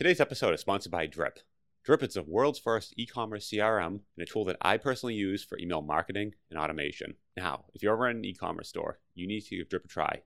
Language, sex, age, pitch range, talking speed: English, male, 30-49, 85-115 Hz, 245 wpm